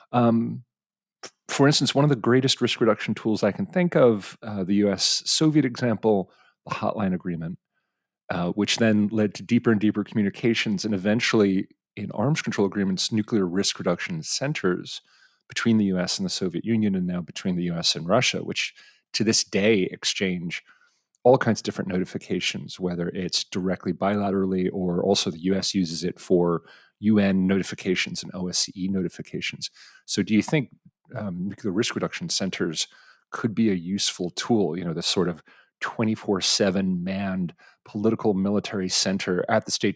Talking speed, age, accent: 165 wpm, 30-49, American